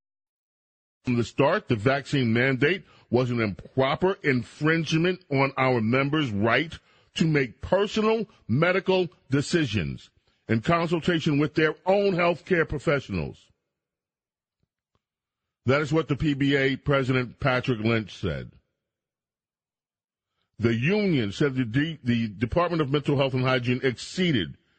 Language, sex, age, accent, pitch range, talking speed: English, male, 40-59, American, 120-155 Hz, 120 wpm